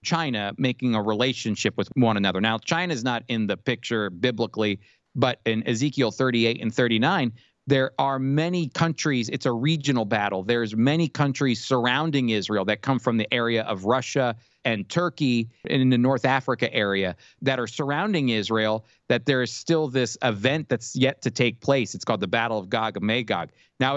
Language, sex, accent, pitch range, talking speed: English, male, American, 110-140 Hz, 185 wpm